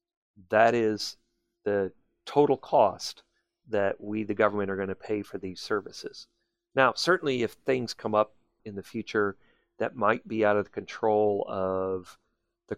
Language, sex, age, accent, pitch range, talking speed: English, male, 40-59, American, 100-125 Hz, 160 wpm